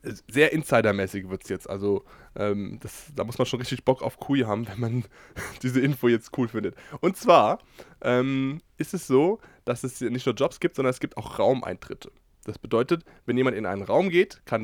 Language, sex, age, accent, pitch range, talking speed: German, male, 20-39, German, 110-140 Hz, 205 wpm